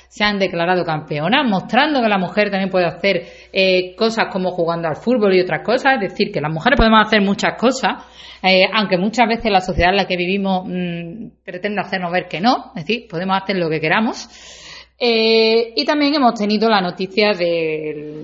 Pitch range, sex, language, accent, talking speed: 180-230 Hz, female, Spanish, Spanish, 195 wpm